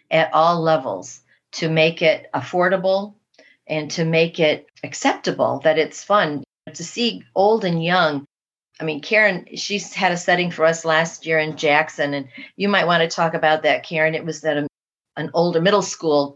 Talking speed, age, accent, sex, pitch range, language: 180 wpm, 40-59, American, female, 155-185 Hz, English